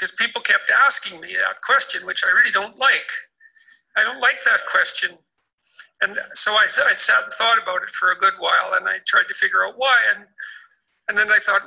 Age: 60-79